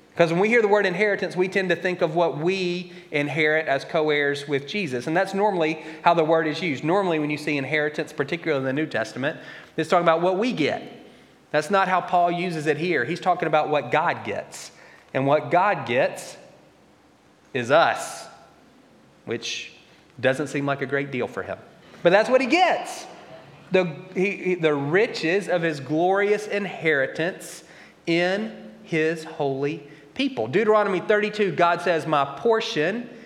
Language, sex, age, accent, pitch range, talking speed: English, male, 30-49, American, 150-185 Hz, 170 wpm